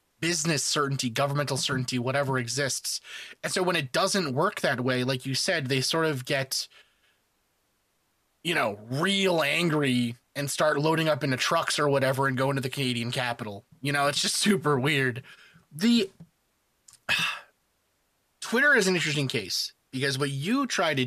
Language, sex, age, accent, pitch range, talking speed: English, male, 30-49, American, 140-195 Hz, 160 wpm